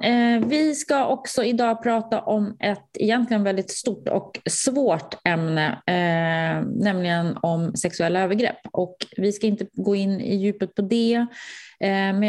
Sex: female